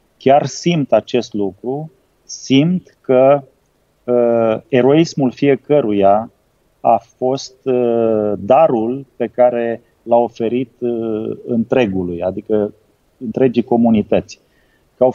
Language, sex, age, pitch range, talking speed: Romanian, male, 30-49, 115-135 Hz, 80 wpm